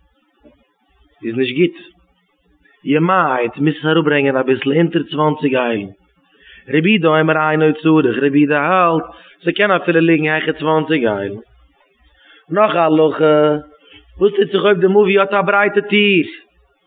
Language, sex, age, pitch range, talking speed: English, male, 30-49, 145-180 Hz, 140 wpm